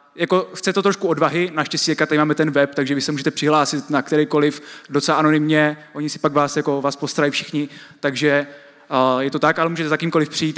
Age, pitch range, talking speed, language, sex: 20-39, 140-165 Hz, 210 wpm, Czech, male